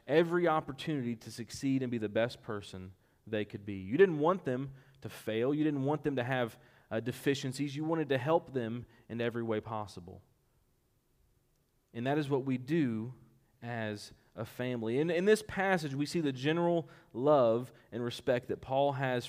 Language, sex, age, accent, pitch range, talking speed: English, male, 30-49, American, 115-155 Hz, 180 wpm